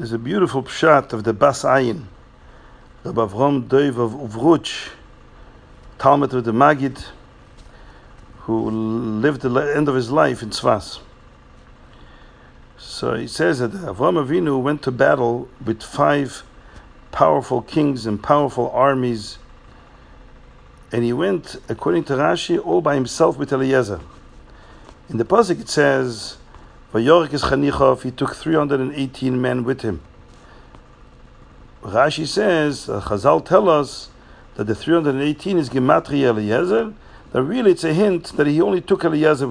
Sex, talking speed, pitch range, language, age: male, 135 wpm, 120-150 Hz, English, 50-69